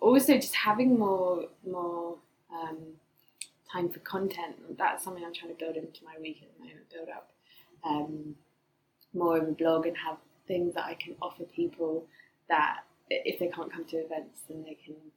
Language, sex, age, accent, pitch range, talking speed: English, female, 20-39, British, 155-185 Hz, 180 wpm